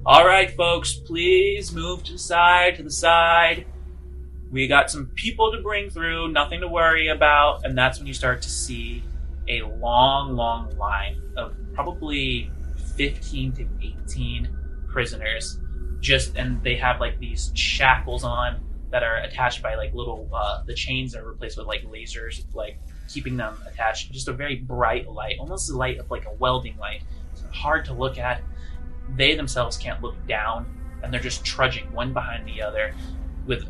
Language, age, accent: English, 20-39, American